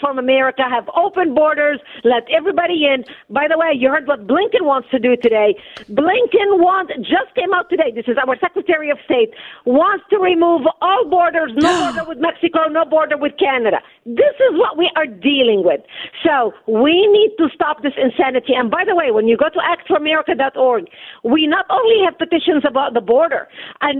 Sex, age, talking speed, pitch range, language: female, 50-69, 200 wpm, 265-345 Hz, English